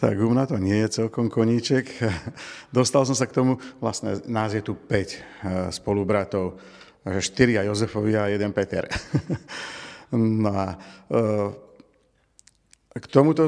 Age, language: 50-69, Slovak